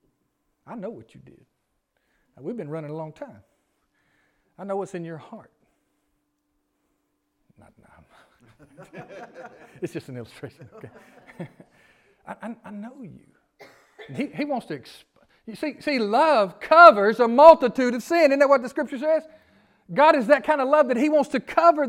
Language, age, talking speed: English, 40-59, 175 wpm